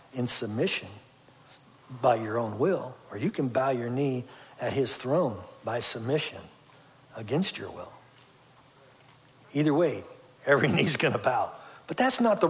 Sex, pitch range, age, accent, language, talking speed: male, 125-155 Hz, 60-79, American, English, 145 wpm